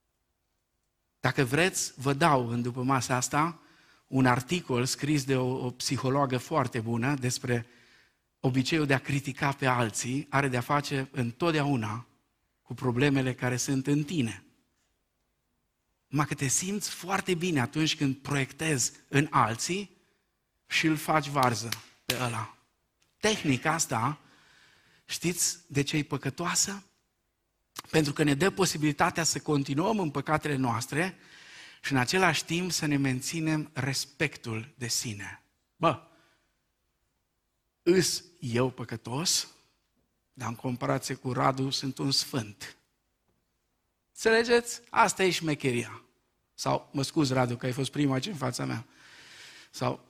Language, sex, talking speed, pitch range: Romanian, male, 130 wpm, 125-160 Hz